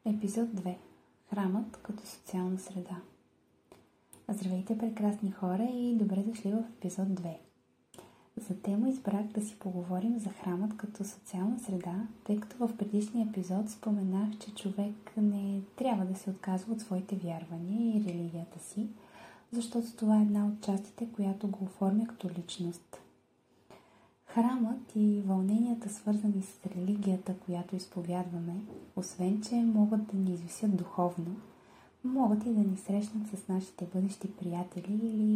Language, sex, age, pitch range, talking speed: Bulgarian, female, 20-39, 185-215 Hz, 135 wpm